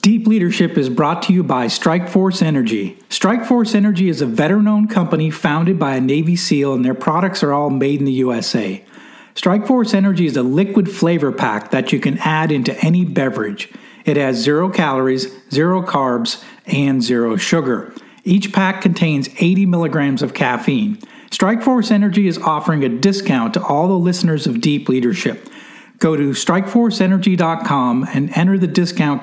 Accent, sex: American, male